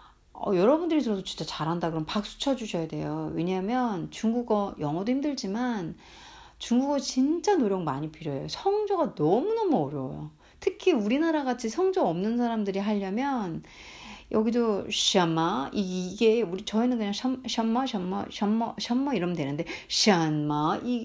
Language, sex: Korean, female